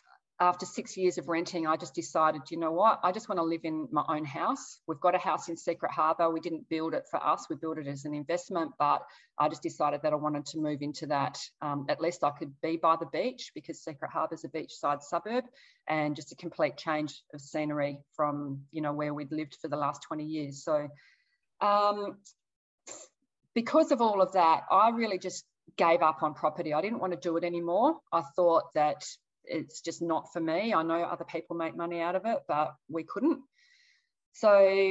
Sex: female